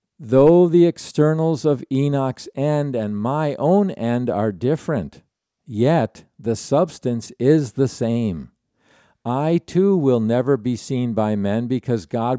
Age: 50-69